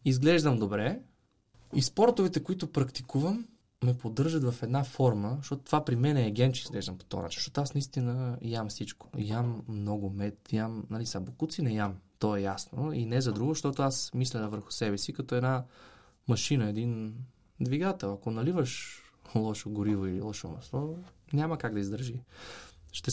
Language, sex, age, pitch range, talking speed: Bulgarian, male, 20-39, 105-140 Hz, 170 wpm